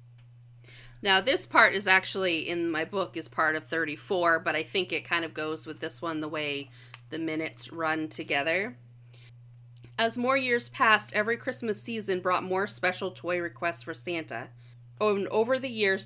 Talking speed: 170 wpm